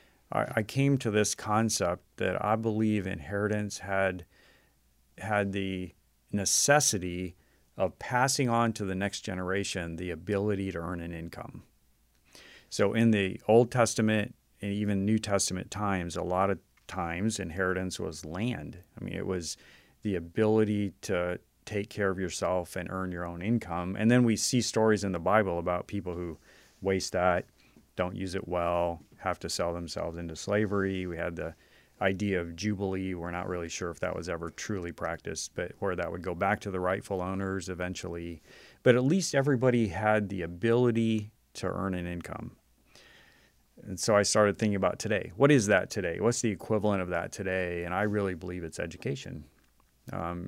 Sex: male